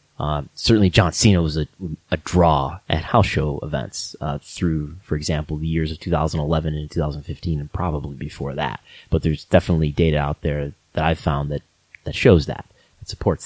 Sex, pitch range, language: male, 75-95 Hz, English